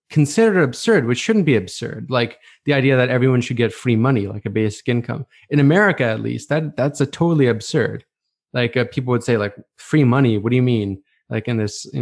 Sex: male